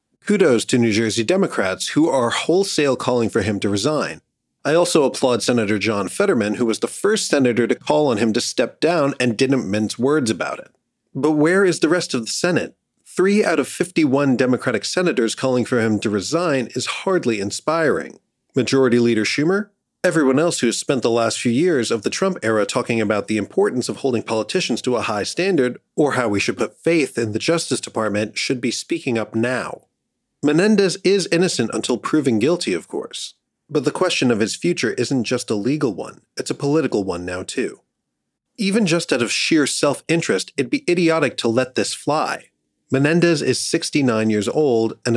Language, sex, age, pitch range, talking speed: English, male, 40-59, 115-165 Hz, 195 wpm